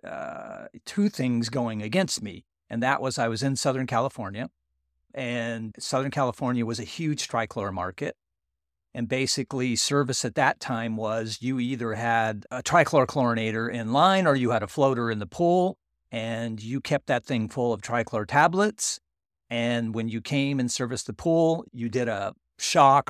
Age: 50-69